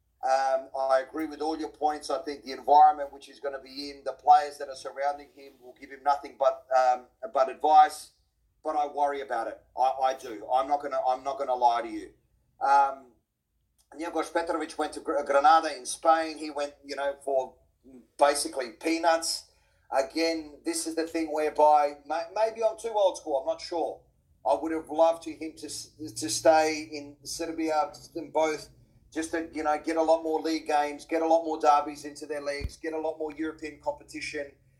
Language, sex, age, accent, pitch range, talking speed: English, male, 40-59, Australian, 140-160 Hz, 200 wpm